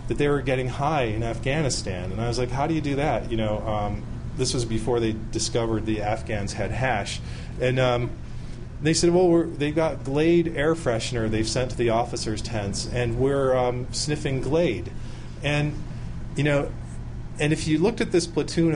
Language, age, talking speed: English, 30-49, 190 wpm